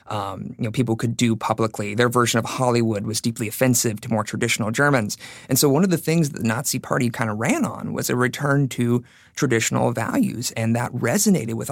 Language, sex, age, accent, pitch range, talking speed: English, male, 30-49, American, 110-130 Hz, 215 wpm